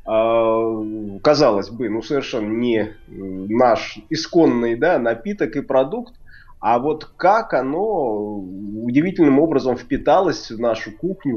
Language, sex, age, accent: Russian, male, 20-39, native